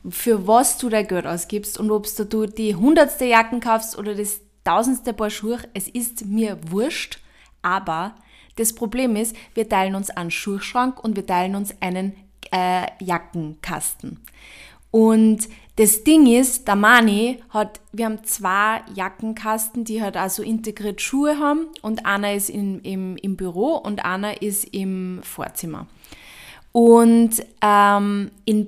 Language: German